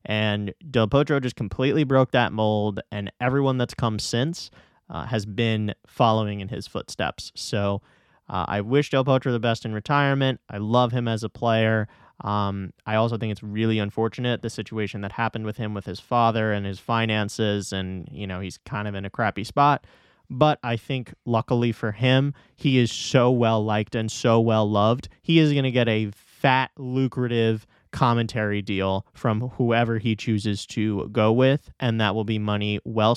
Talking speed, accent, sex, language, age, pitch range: 185 wpm, American, male, English, 20-39, 105-125 Hz